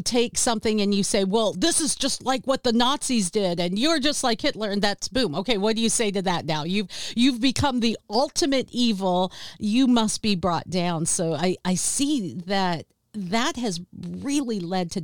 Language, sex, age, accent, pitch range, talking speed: English, female, 50-69, American, 180-245 Hz, 205 wpm